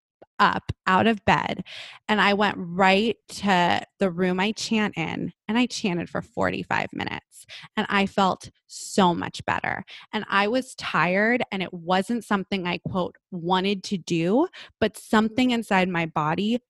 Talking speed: 160 wpm